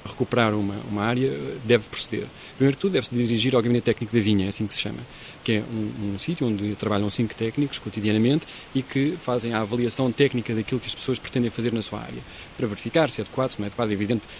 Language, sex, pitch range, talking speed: Portuguese, male, 110-130 Hz, 235 wpm